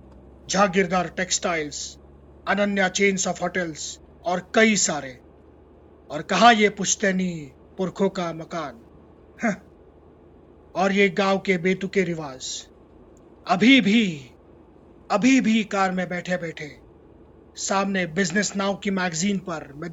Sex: male